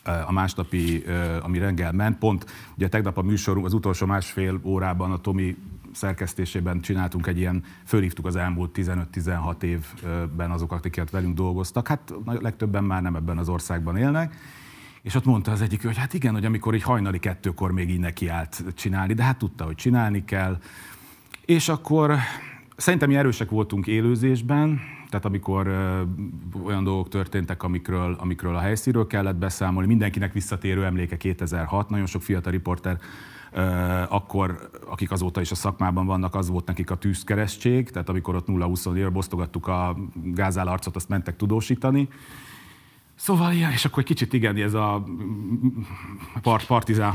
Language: Hungarian